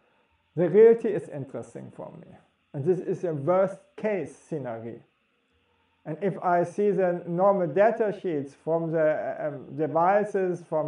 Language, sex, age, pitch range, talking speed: English, male, 50-69, 145-185 Hz, 145 wpm